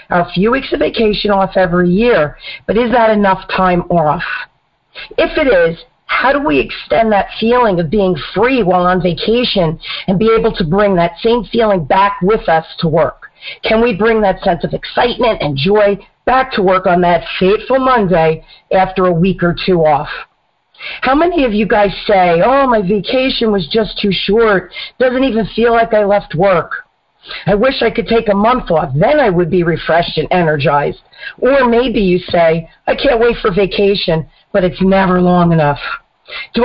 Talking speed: 185 wpm